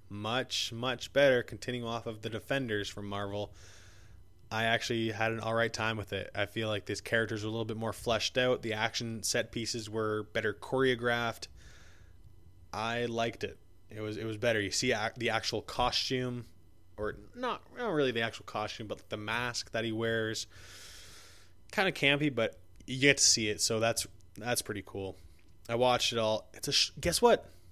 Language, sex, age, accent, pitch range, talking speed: English, male, 20-39, American, 100-125 Hz, 185 wpm